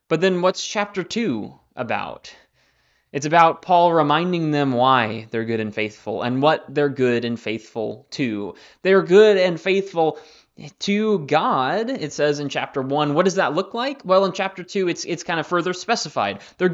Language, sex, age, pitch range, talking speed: English, male, 20-39, 130-185 Hz, 180 wpm